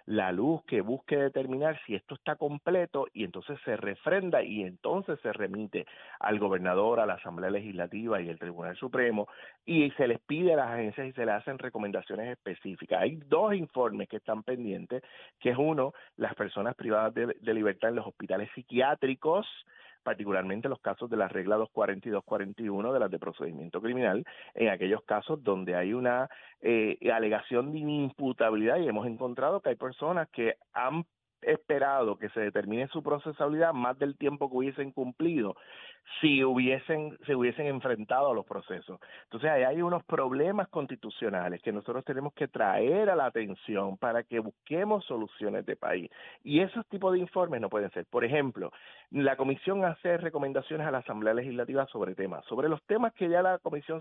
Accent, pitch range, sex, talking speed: Venezuelan, 115-155 Hz, male, 175 wpm